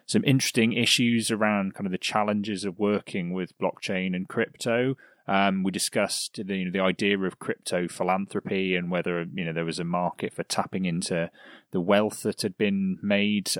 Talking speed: 185 wpm